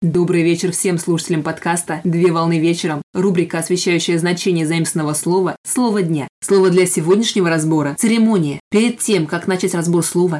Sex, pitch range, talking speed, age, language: female, 170-195 Hz, 150 wpm, 20-39, Russian